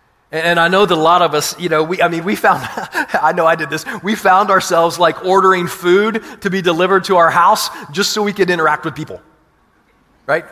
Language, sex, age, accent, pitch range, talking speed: English, male, 30-49, American, 185-255 Hz, 230 wpm